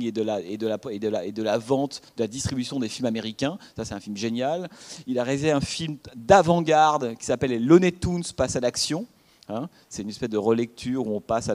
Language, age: French, 30-49